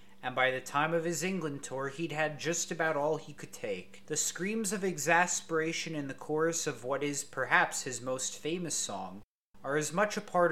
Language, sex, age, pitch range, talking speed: English, male, 30-49, 115-165 Hz, 205 wpm